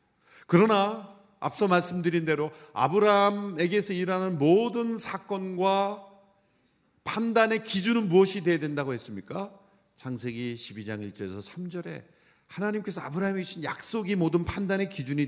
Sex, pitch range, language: male, 125-195 Hz, Korean